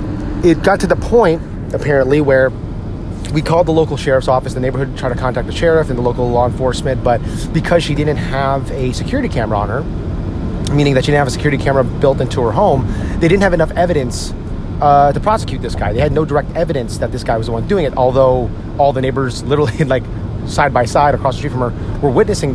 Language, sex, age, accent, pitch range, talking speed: English, male, 30-49, American, 115-145 Hz, 240 wpm